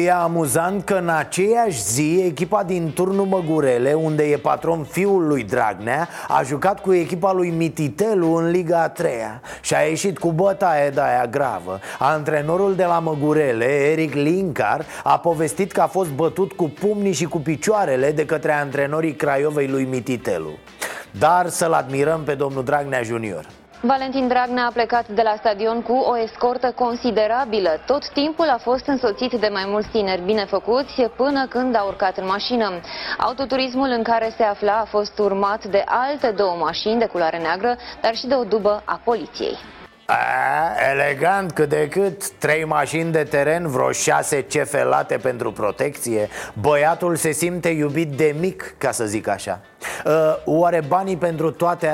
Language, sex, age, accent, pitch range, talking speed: Romanian, male, 20-39, native, 150-210 Hz, 160 wpm